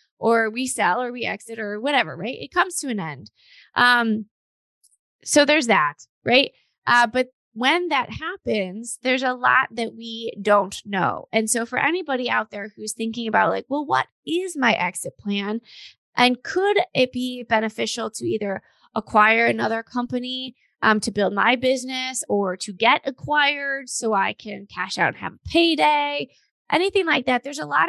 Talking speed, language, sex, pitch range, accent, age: 175 wpm, English, female, 215-270 Hz, American, 20-39